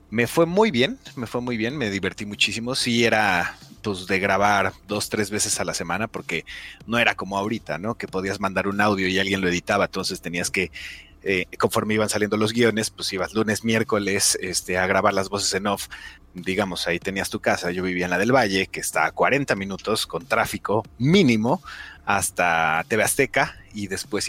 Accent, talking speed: Mexican, 200 wpm